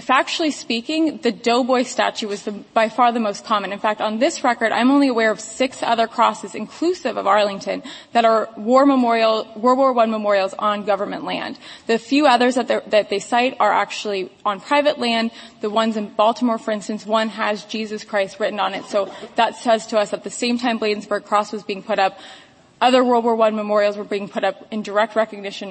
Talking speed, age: 210 wpm, 20-39